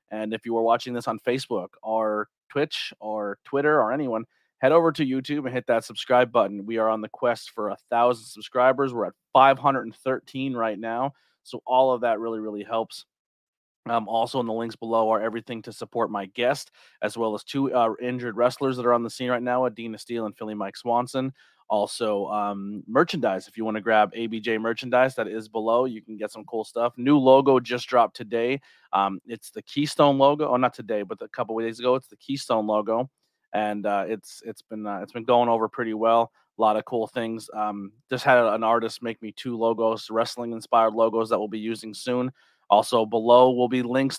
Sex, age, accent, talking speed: male, 30-49, American, 215 wpm